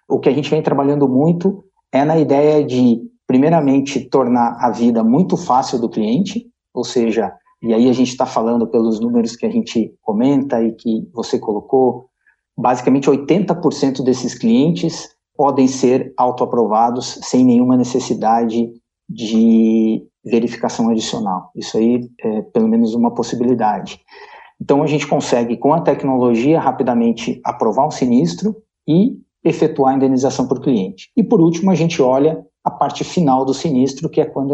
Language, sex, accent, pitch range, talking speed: Portuguese, male, Brazilian, 120-155 Hz, 155 wpm